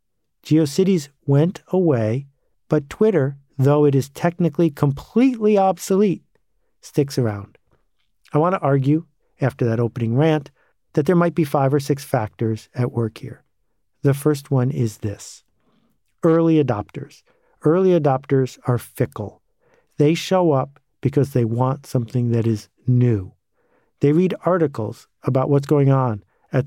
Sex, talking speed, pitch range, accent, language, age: male, 135 wpm, 120-150 Hz, American, English, 50-69